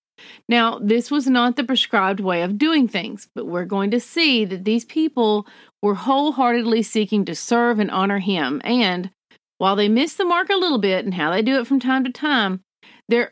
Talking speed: 205 wpm